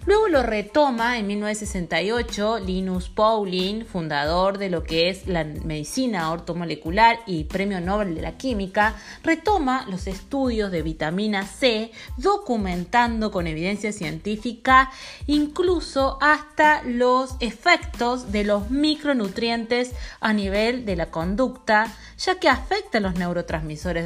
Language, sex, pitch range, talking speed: Spanish, female, 185-265 Hz, 120 wpm